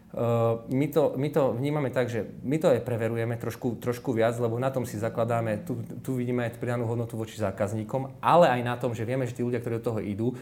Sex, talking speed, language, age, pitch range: male, 230 wpm, Slovak, 30-49, 105-130 Hz